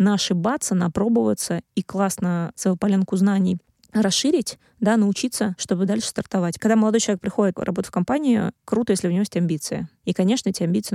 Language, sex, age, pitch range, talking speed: Russian, female, 20-39, 175-215 Hz, 170 wpm